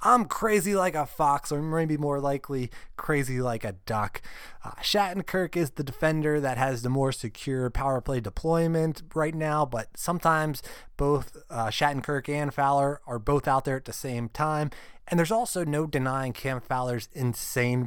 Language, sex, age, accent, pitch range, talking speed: English, male, 20-39, American, 120-155 Hz, 170 wpm